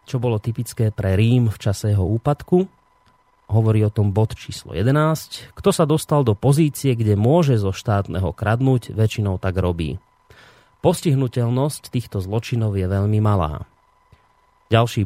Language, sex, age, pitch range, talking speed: Slovak, male, 30-49, 105-140 Hz, 140 wpm